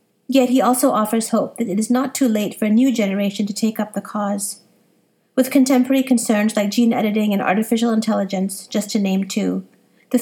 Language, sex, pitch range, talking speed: English, female, 210-245 Hz, 200 wpm